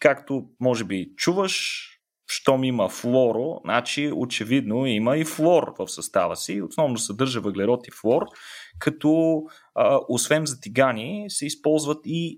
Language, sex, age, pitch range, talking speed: Bulgarian, male, 30-49, 115-170 Hz, 125 wpm